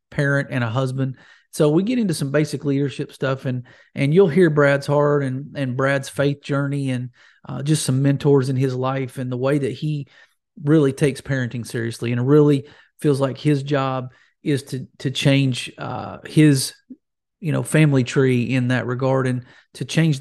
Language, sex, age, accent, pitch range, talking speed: English, male, 40-59, American, 130-155 Hz, 185 wpm